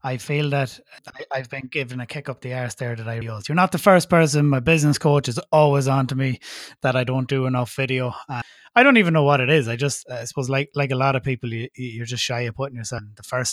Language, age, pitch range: English, 20-39, 125-150 Hz